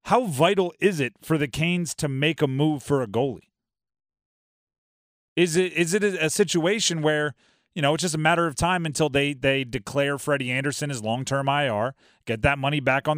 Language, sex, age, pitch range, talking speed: English, male, 30-49, 135-180 Hz, 200 wpm